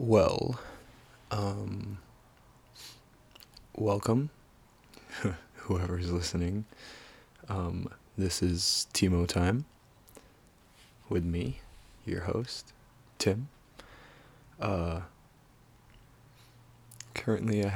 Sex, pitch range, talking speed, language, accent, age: male, 90-110 Hz, 60 wpm, English, American, 20-39